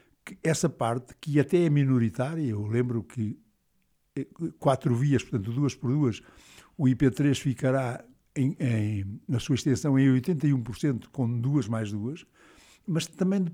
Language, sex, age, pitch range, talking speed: Portuguese, male, 60-79, 120-170 Hz, 140 wpm